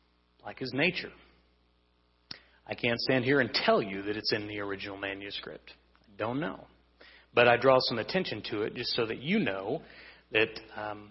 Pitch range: 100-130 Hz